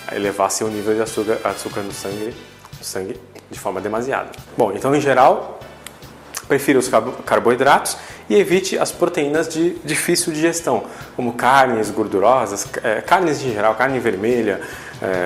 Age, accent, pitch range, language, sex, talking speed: 20-39, Brazilian, 105-135 Hz, Portuguese, male, 145 wpm